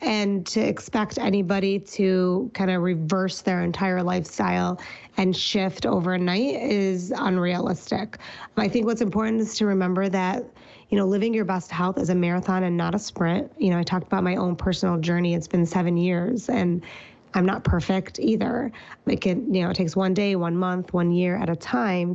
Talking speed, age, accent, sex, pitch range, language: 190 wpm, 20-39, American, female, 180-215 Hz, English